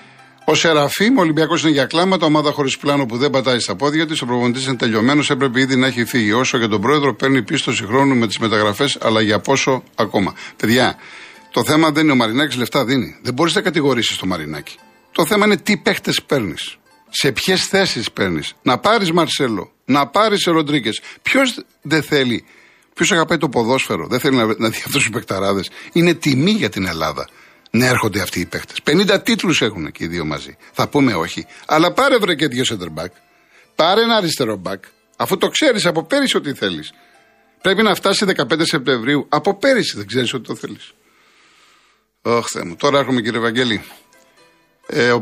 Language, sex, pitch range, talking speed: Greek, male, 120-160 Hz, 185 wpm